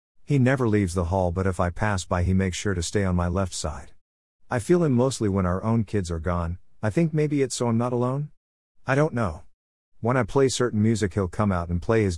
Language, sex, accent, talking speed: English, male, American, 250 wpm